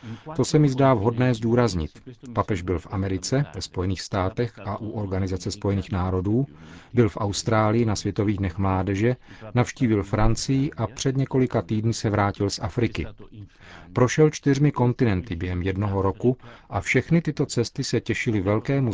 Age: 40-59